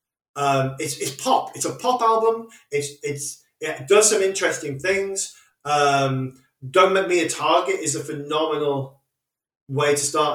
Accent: British